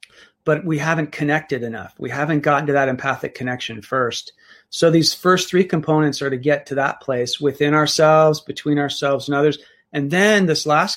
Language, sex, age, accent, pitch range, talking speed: English, male, 40-59, American, 140-165 Hz, 185 wpm